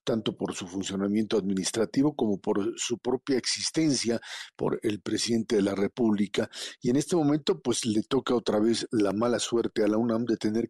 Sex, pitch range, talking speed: male, 110-130 Hz, 185 wpm